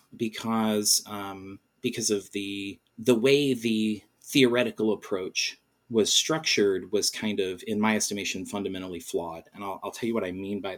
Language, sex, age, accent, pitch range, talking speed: English, male, 30-49, American, 105-135 Hz, 160 wpm